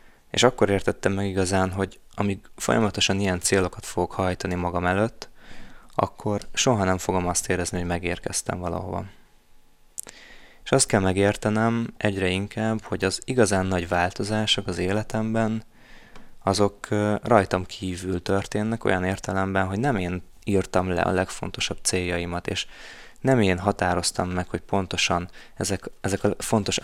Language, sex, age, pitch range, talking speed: Hungarian, male, 20-39, 90-105 Hz, 135 wpm